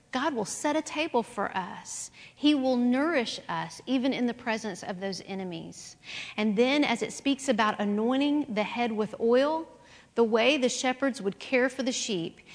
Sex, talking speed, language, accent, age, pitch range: female, 180 wpm, English, American, 50-69, 205-260 Hz